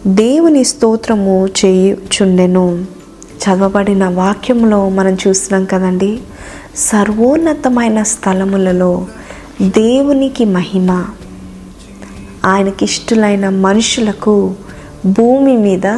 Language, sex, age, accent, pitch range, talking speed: Telugu, female, 20-39, native, 190-230 Hz, 70 wpm